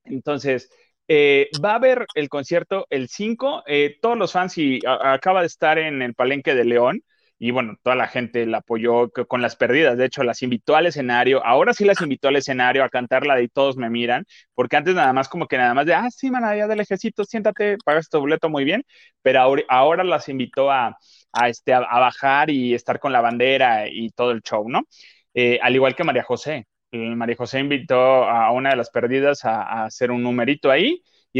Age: 30-49